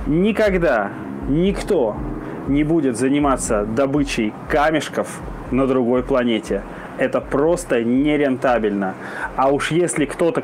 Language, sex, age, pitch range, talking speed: Russian, male, 20-39, 120-150 Hz, 100 wpm